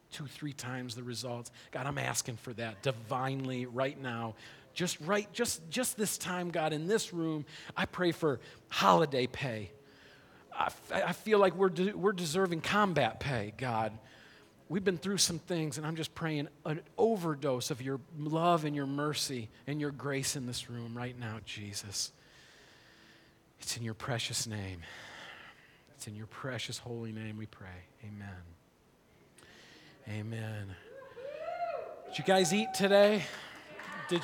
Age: 40-59